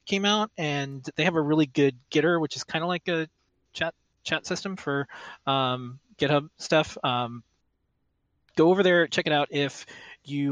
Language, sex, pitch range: English, male, 125-160 Hz